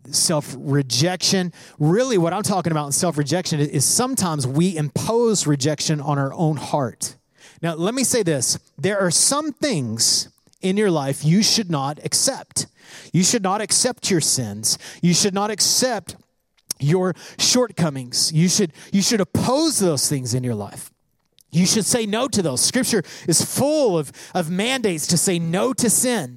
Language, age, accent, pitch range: English, 30-49, American, 150-215 Hz